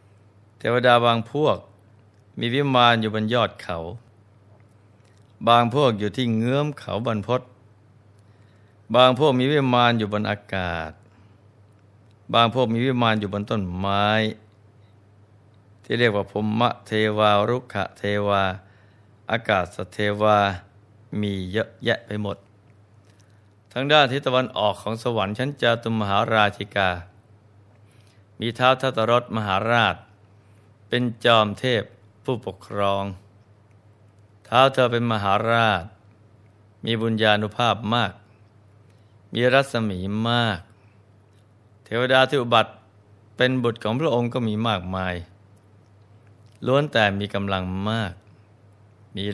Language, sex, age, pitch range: Thai, male, 60-79, 105-115 Hz